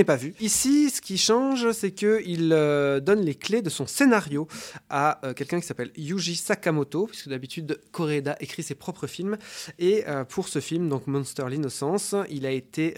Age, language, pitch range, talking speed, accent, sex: 20-39, French, 130-170 Hz, 185 wpm, French, male